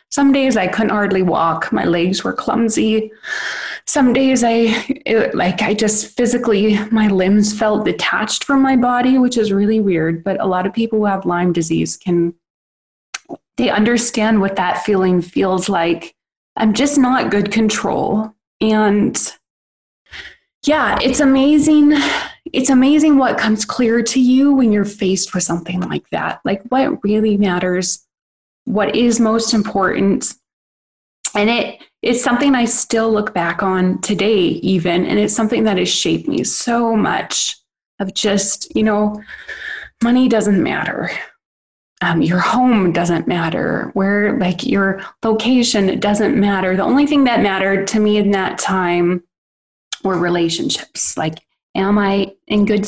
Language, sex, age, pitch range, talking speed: English, female, 20-39, 185-235 Hz, 150 wpm